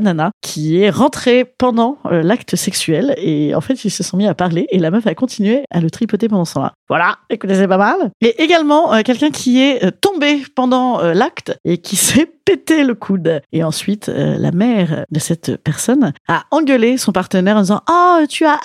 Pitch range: 175-255 Hz